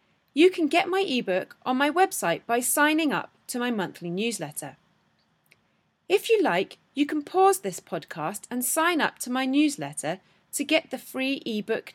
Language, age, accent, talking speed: English, 30-49, British, 170 wpm